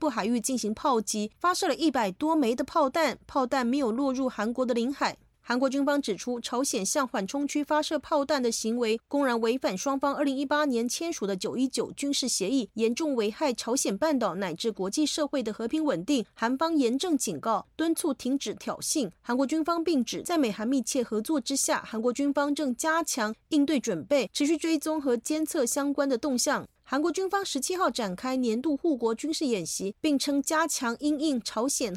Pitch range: 230-295 Hz